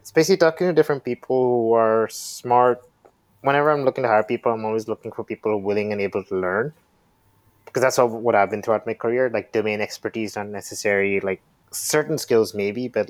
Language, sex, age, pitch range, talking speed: English, male, 20-39, 105-125 Hz, 195 wpm